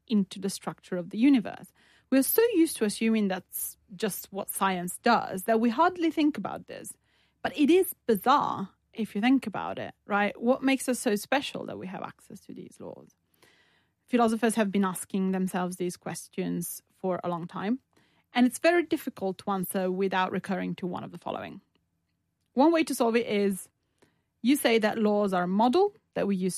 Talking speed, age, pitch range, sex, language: 190 wpm, 30-49, 180-245 Hz, female, English